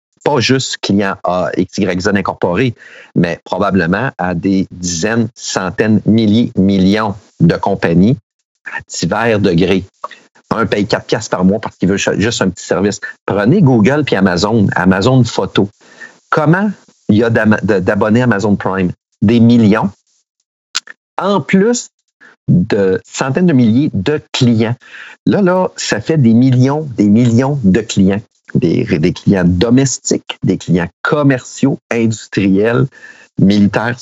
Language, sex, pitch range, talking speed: French, male, 100-135 Hz, 130 wpm